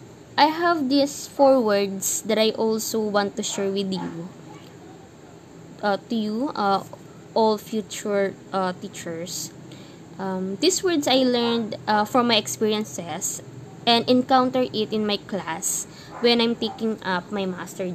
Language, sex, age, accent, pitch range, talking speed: English, female, 20-39, Filipino, 185-250 Hz, 140 wpm